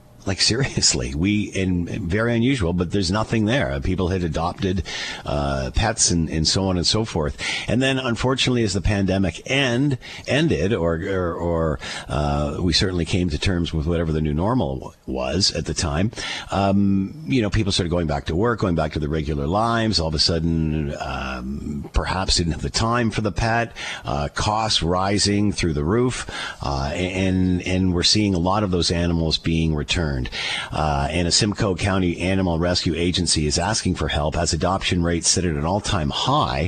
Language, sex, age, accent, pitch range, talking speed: English, male, 50-69, American, 80-100 Hz, 190 wpm